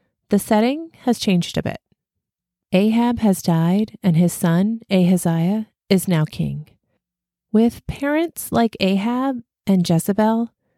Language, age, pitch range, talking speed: English, 30-49, 165-210 Hz, 120 wpm